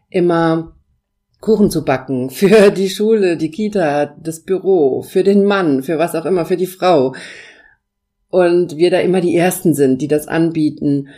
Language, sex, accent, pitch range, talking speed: German, female, German, 145-175 Hz, 165 wpm